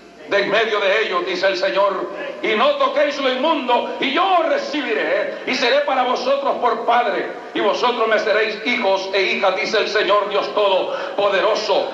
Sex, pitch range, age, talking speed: male, 195-280 Hz, 60-79, 175 wpm